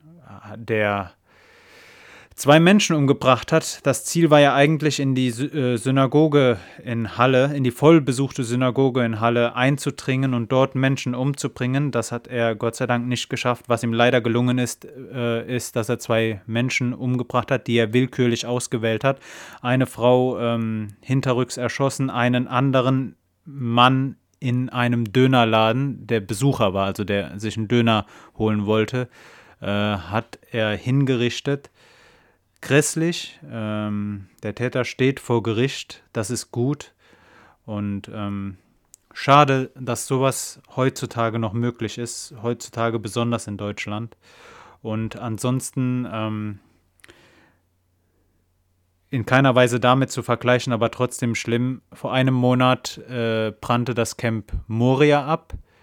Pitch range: 110-130 Hz